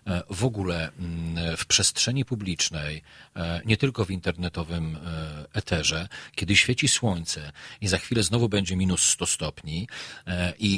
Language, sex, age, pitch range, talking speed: Polish, male, 40-59, 90-120 Hz, 120 wpm